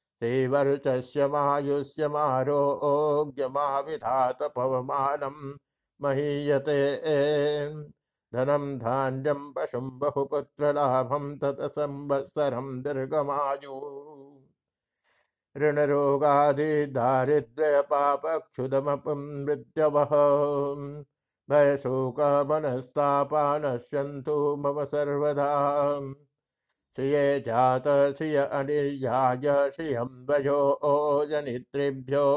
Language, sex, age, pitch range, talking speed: Hindi, male, 60-79, 140-145 Hz, 45 wpm